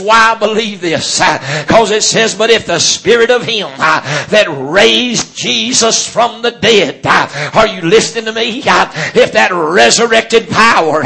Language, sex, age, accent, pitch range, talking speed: English, male, 50-69, American, 205-235 Hz, 170 wpm